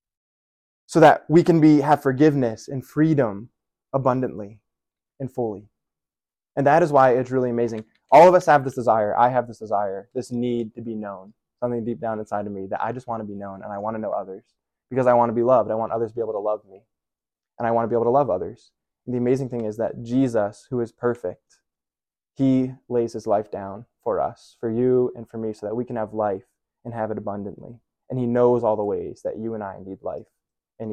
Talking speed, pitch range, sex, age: 235 wpm, 110-125 Hz, male, 20-39